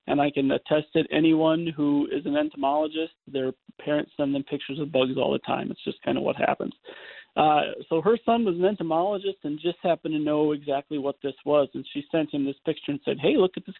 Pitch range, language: 135-165 Hz, English